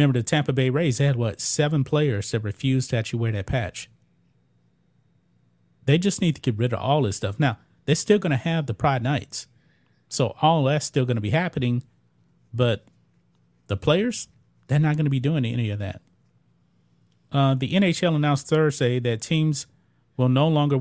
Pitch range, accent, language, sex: 115-150 Hz, American, English, male